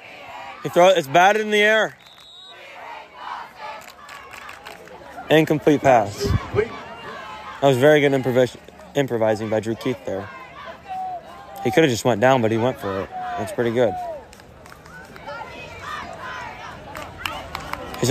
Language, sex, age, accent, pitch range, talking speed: English, male, 20-39, American, 120-160 Hz, 115 wpm